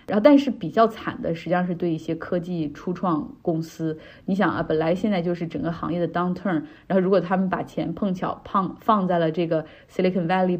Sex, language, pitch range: female, Chinese, 165-205 Hz